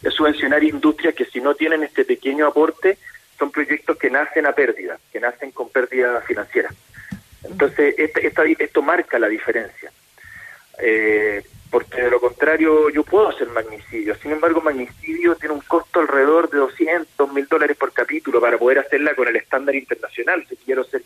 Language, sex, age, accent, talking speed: Spanish, male, 30-49, Argentinian, 170 wpm